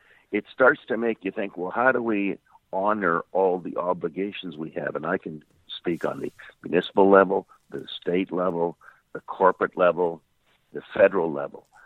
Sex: male